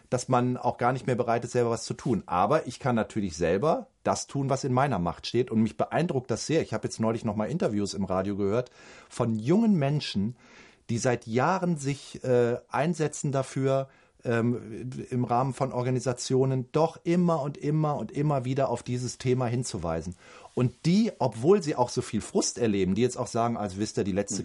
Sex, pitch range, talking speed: male, 110-135 Hz, 205 wpm